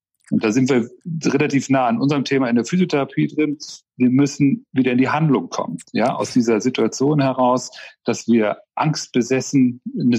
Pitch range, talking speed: 125-165 Hz, 170 wpm